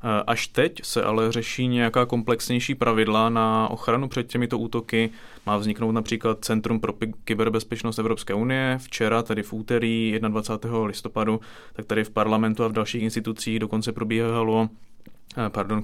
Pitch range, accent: 110-115 Hz, native